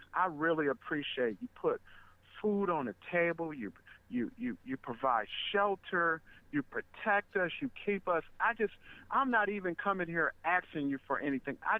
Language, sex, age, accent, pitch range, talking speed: English, male, 50-69, American, 140-190 Hz, 170 wpm